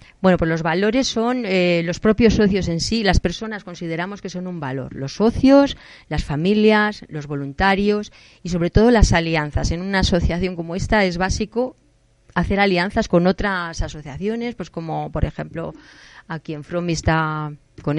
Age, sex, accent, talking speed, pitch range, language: 30-49, female, Spanish, 165 wpm, 155-200 Hz, Spanish